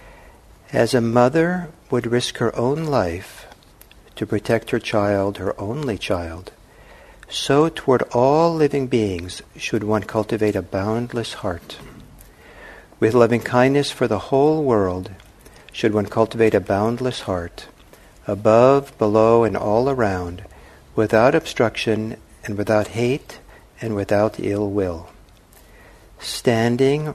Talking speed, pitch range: 120 wpm, 100-125 Hz